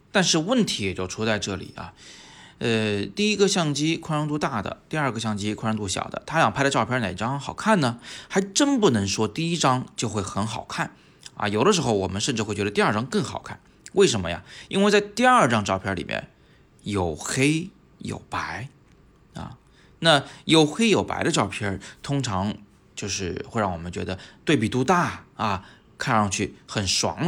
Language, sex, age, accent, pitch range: Chinese, male, 20-39, native, 105-165 Hz